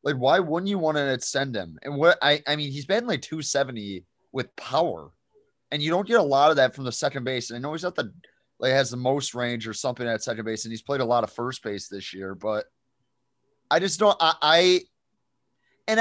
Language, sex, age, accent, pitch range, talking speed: English, male, 30-49, American, 125-160 Hz, 240 wpm